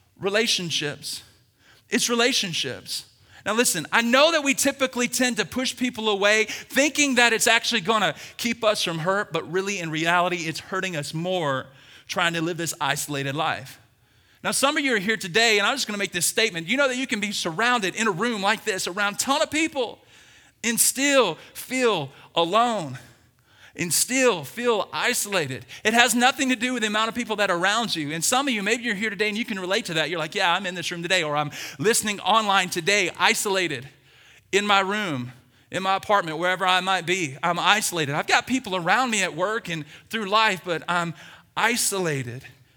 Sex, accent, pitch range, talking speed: male, American, 165-235 Hz, 205 wpm